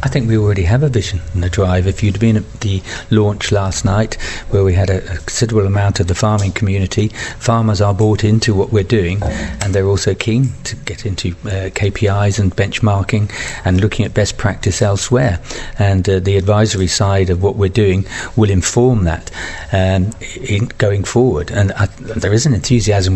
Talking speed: 195 wpm